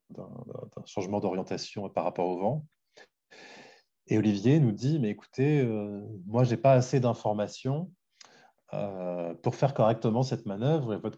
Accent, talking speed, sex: French, 155 wpm, male